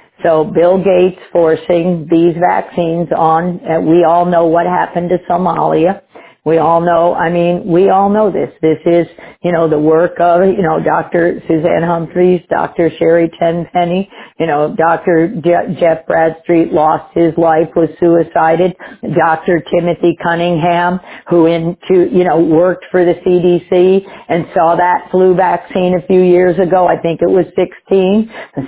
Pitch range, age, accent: 165-185 Hz, 50-69, American